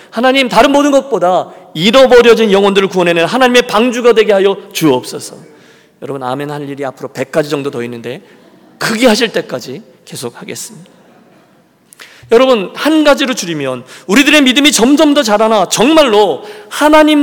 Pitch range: 150-235 Hz